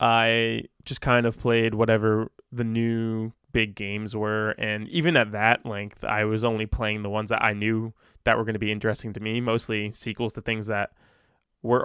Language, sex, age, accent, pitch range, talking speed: English, male, 20-39, American, 110-130 Hz, 195 wpm